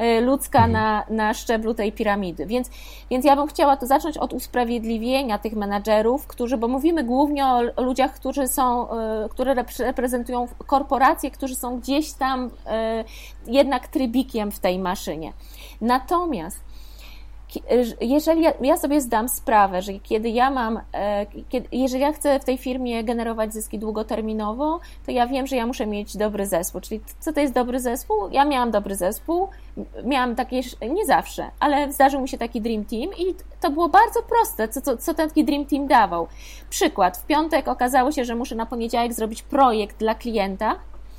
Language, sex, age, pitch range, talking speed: Polish, female, 20-39, 220-270 Hz, 160 wpm